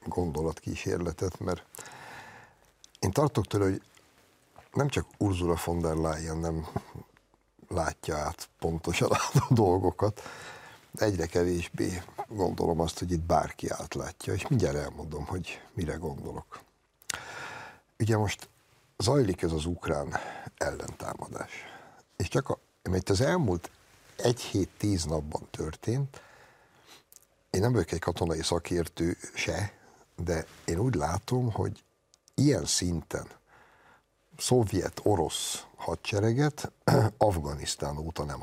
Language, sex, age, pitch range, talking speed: Hungarian, male, 60-79, 80-100 Hz, 105 wpm